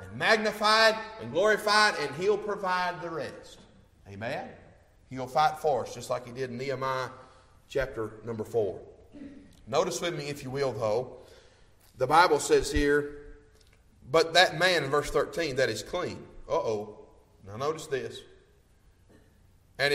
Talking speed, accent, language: 145 wpm, American, English